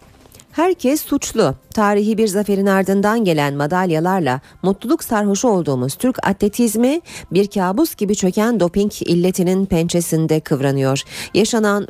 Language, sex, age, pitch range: Turkish, female, 40-59, 160-225 Hz